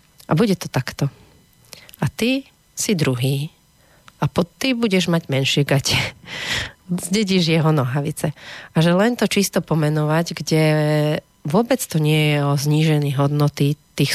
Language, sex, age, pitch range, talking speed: Slovak, female, 30-49, 145-170 Hz, 140 wpm